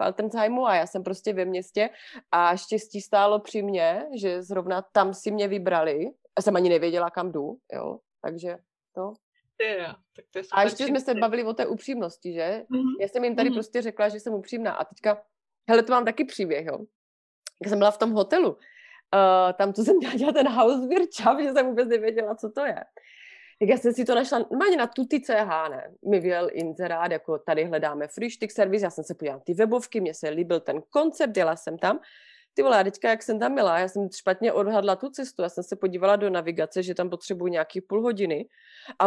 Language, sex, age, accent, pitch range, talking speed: Czech, female, 30-49, native, 180-230 Hz, 200 wpm